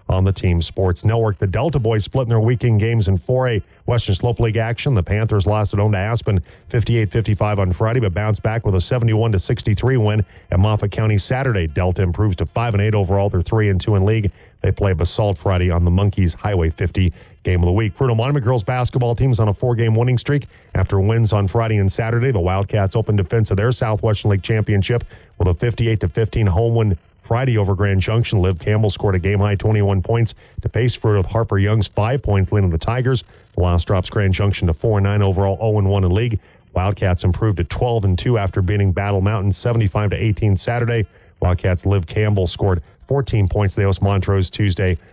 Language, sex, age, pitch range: English, male, 40-59, 95-115 Hz